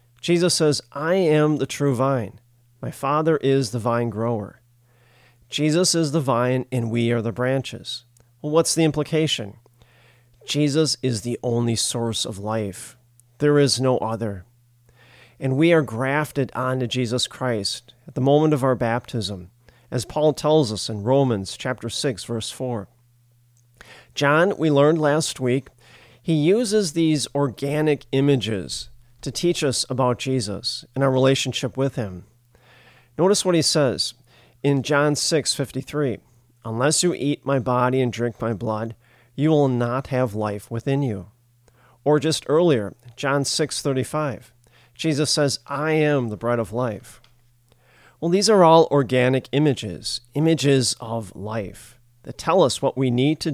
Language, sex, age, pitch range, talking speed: English, male, 40-59, 120-145 Hz, 150 wpm